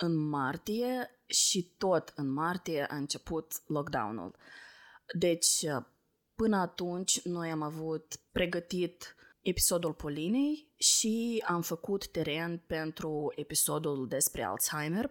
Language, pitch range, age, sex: Romanian, 155-190 Hz, 20-39, female